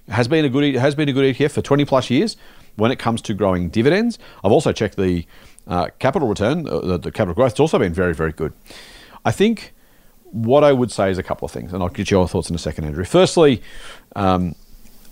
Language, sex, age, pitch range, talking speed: English, male, 40-59, 100-135 Hz, 235 wpm